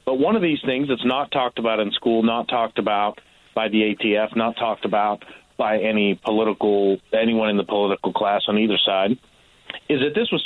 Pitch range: 110-140 Hz